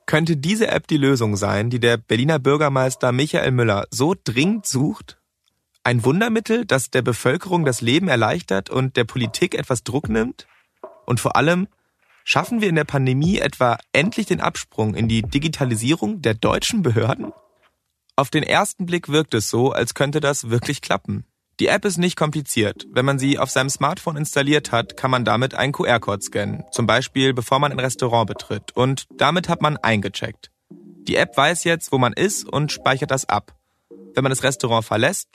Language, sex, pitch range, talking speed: German, male, 115-155 Hz, 180 wpm